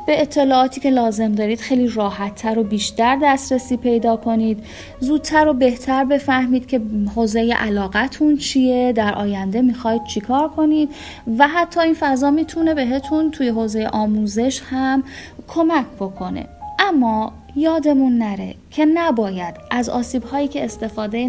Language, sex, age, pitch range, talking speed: Persian, female, 10-29, 205-275 Hz, 130 wpm